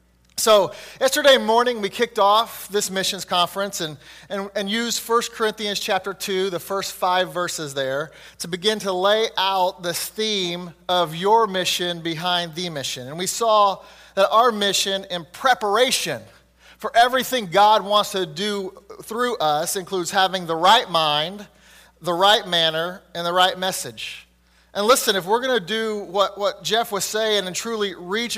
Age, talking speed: 30-49, 165 wpm